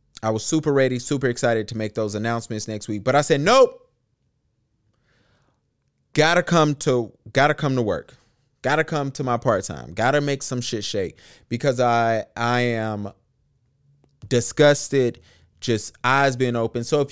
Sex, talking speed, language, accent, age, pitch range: male, 155 wpm, English, American, 30-49, 105-130 Hz